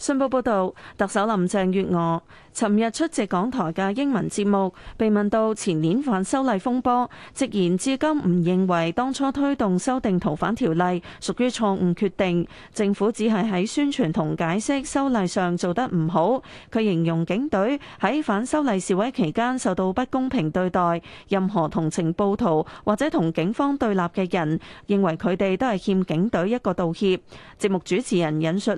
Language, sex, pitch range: Chinese, female, 180-240 Hz